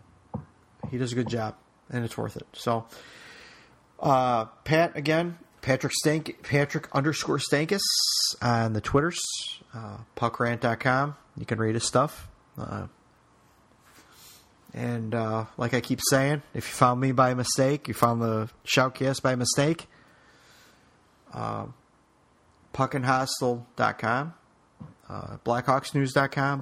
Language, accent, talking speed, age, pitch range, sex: English, American, 115 wpm, 30-49, 115-135 Hz, male